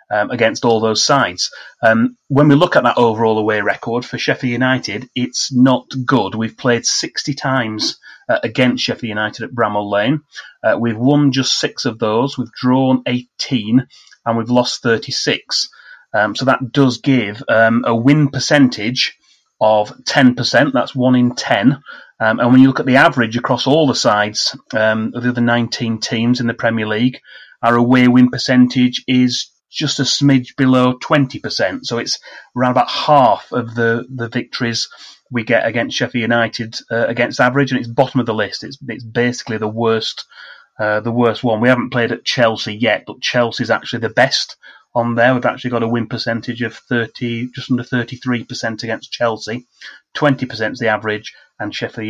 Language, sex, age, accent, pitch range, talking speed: English, male, 30-49, British, 115-130 Hz, 180 wpm